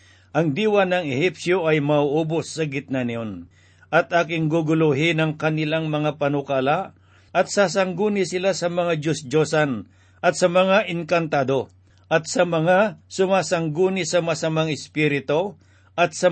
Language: Filipino